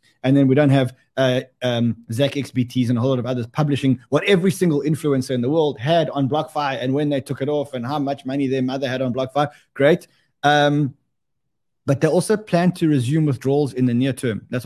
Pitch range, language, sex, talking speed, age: 130-165 Hz, English, male, 225 wpm, 20-39